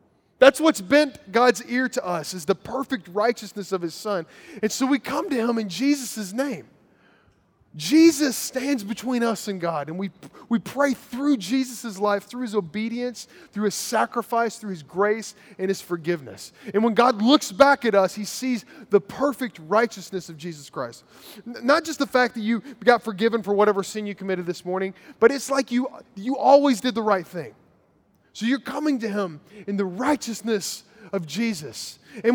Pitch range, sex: 185-250 Hz, male